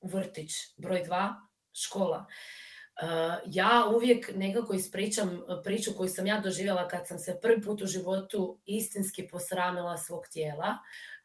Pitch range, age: 175-215 Hz, 20-39